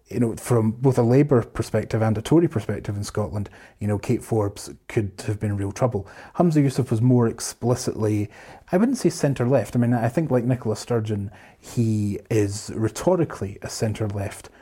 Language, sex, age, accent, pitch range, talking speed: English, male, 30-49, British, 105-120 Hz, 175 wpm